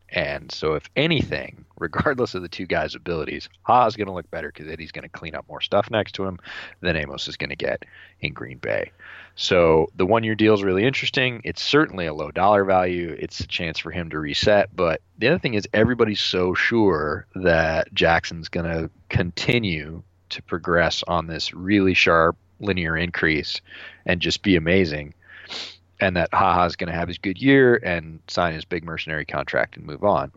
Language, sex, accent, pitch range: English, male, American, 85-105 Hz